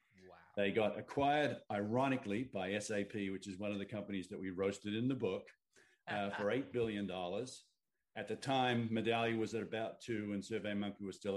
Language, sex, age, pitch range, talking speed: English, male, 50-69, 90-105 Hz, 185 wpm